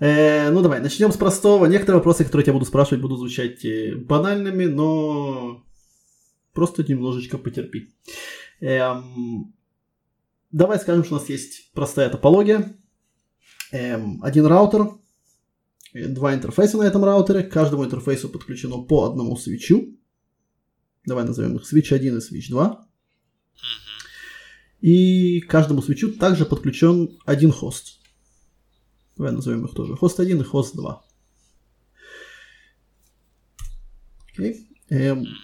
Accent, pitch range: native, 135-195 Hz